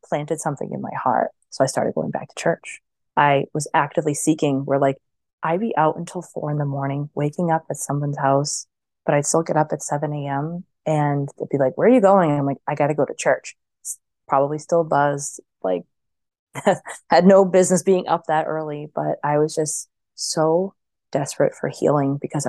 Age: 20-39